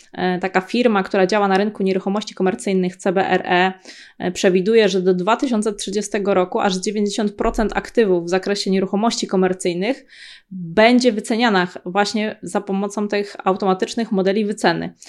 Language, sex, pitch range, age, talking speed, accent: Polish, female, 185-215 Hz, 20-39, 120 wpm, native